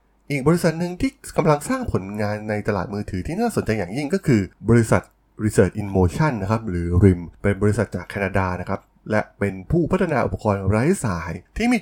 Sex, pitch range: male, 100-135 Hz